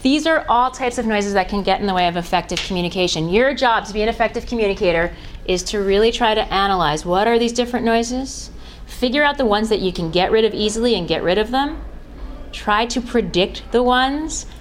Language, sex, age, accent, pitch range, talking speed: English, female, 30-49, American, 170-225 Hz, 220 wpm